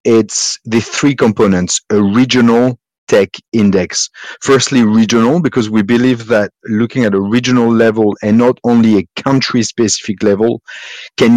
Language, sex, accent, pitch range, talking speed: English, male, French, 100-120 Hz, 135 wpm